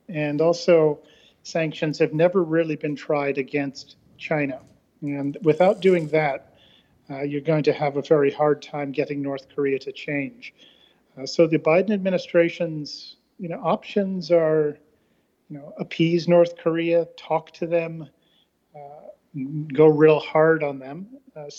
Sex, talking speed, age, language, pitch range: male, 145 wpm, 40-59, English, 145-170 Hz